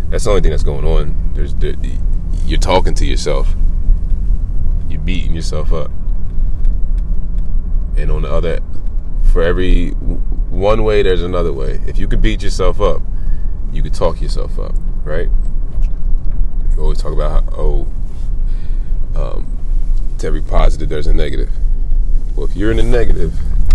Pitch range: 75-90 Hz